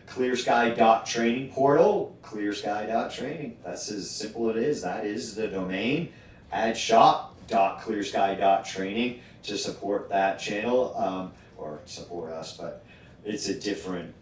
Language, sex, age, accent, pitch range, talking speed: English, male, 40-59, American, 95-120 Hz, 115 wpm